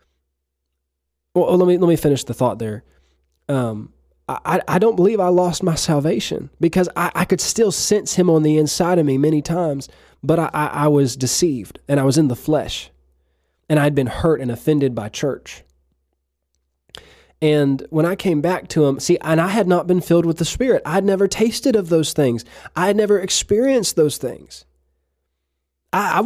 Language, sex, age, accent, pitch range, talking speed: English, male, 20-39, American, 125-200 Hz, 185 wpm